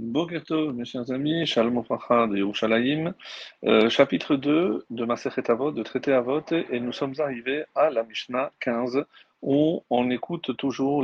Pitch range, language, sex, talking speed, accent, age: 120-150 Hz, French, male, 150 wpm, French, 40-59